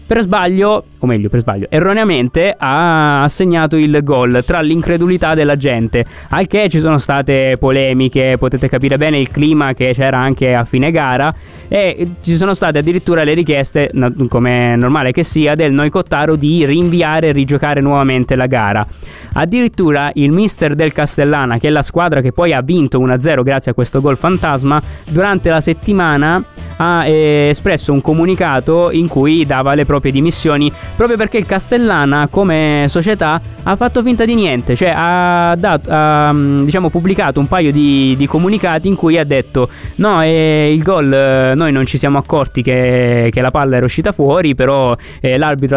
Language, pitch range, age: Italian, 135-165 Hz, 20-39